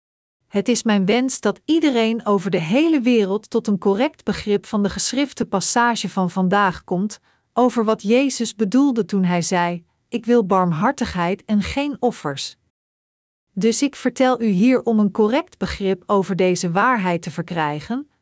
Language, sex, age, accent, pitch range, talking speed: Dutch, female, 40-59, Dutch, 200-245 Hz, 155 wpm